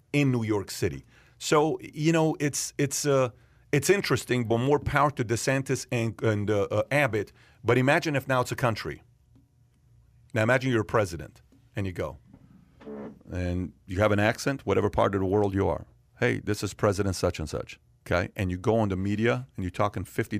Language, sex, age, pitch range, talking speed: English, male, 40-59, 95-120 Hz, 200 wpm